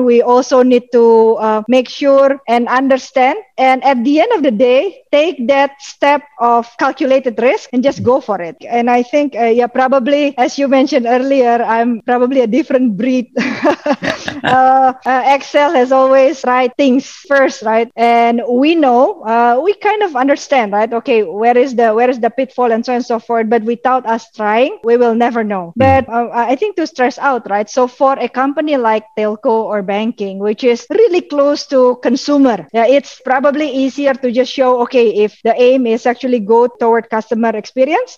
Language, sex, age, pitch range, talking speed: English, female, 20-39, 235-275 Hz, 185 wpm